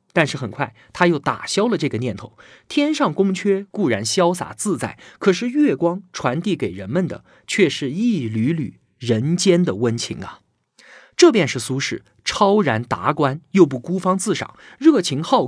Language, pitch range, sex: Chinese, 125-200 Hz, male